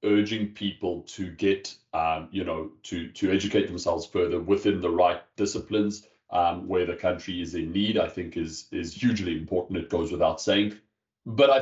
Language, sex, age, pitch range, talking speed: English, male, 30-49, 100-125 Hz, 180 wpm